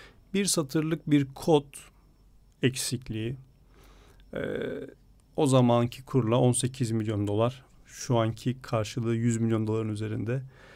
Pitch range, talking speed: 125-140 Hz, 105 wpm